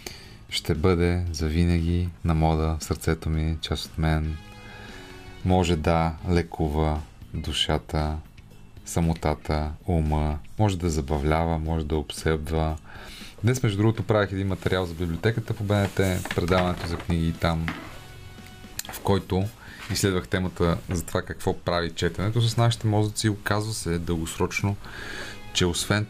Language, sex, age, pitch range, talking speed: Bulgarian, male, 30-49, 85-105 Hz, 125 wpm